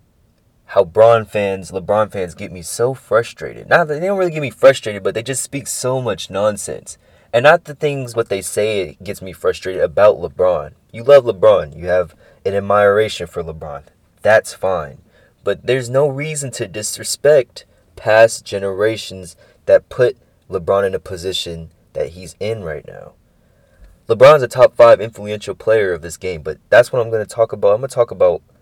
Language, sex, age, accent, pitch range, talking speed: English, male, 20-39, American, 90-135 Hz, 185 wpm